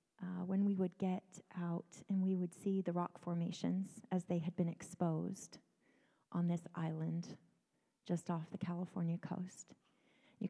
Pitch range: 175-205 Hz